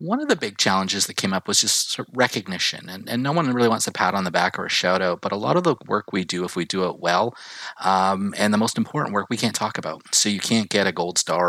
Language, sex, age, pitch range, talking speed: English, male, 30-49, 95-115 Hz, 290 wpm